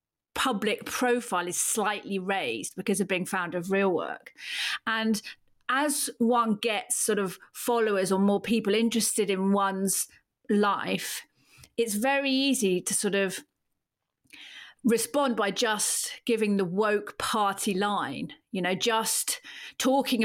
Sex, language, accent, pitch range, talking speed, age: female, English, British, 195-240 Hz, 130 wpm, 40-59